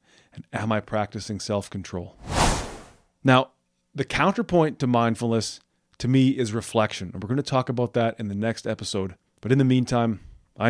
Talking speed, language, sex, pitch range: 175 wpm, English, male, 105-130 Hz